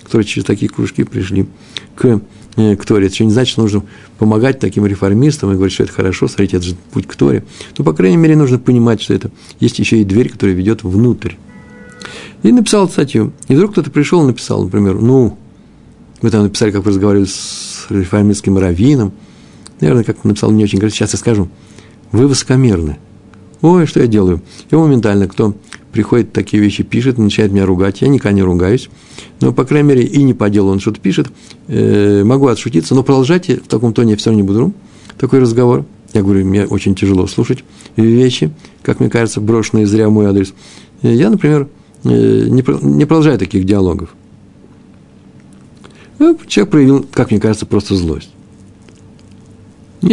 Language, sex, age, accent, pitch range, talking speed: Russian, male, 50-69, native, 100-125 Hz, 180 wpm